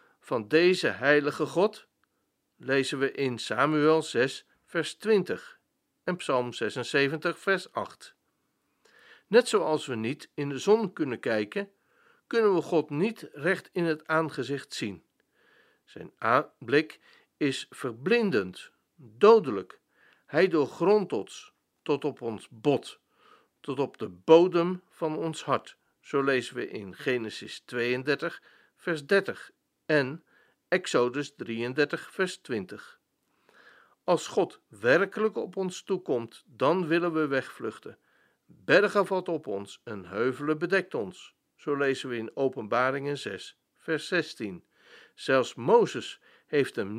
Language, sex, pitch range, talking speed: Dutch, male, 135-180 Hz, 125 wpm